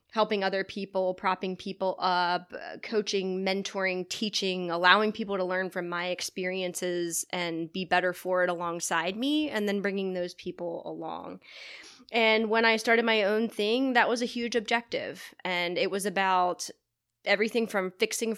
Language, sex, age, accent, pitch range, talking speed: English, female, 20-39, American, 185-220 Hz, 155 wpm